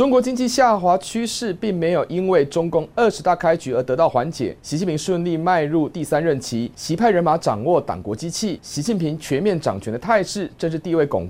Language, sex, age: Chinese, male, 30-49